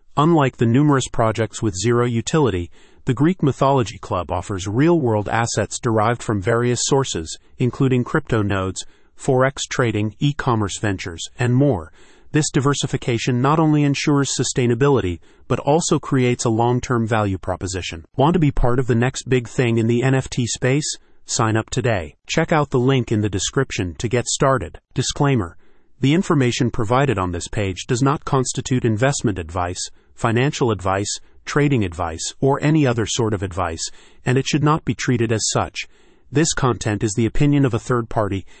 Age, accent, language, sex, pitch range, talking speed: 40-59, American, English, male, 105-135 Hz, 165 wpm